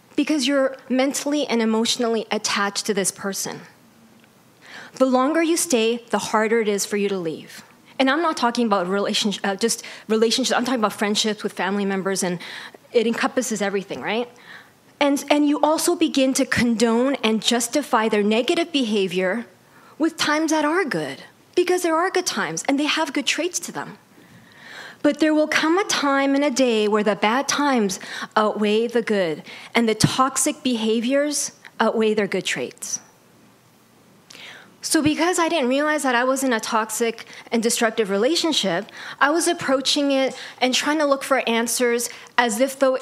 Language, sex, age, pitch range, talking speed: English, female, 20-39, 215-275 Hz, 170 wpm